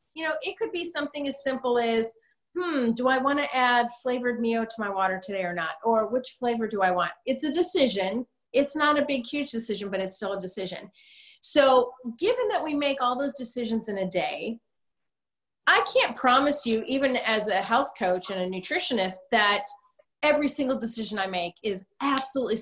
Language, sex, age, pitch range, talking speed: English, female, 30-49, 200-270 Hz, 195 wpm